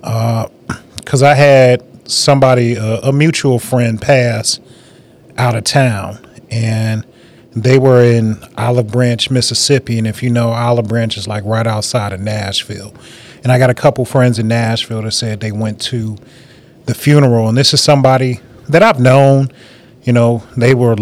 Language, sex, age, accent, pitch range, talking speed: English, male, 30-49, American, 120-140 Hz, 165 wpm